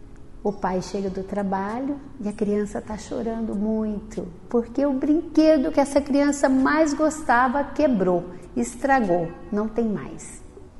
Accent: Brazilian